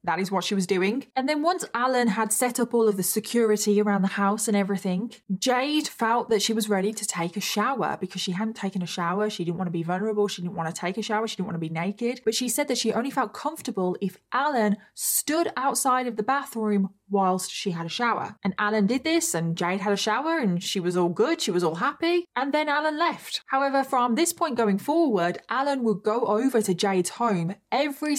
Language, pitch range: English, 185-235 Hz